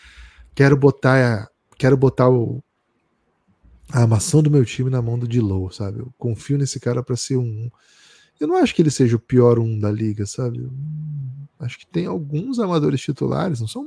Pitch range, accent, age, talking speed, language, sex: 120-155 Hz, Brazilian, 10-29, 175 wpm, Portuguese, male